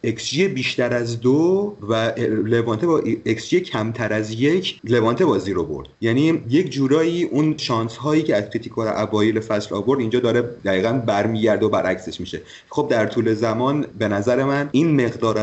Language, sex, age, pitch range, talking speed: Persian, male, 30-49, 105-135 Hz, 170 wpm